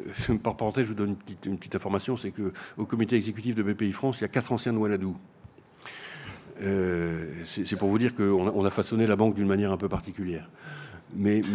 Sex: male